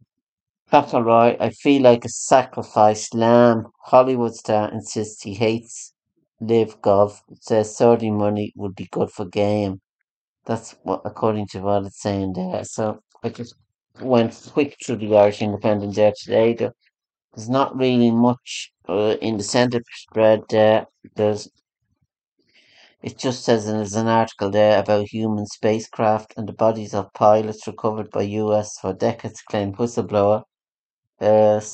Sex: male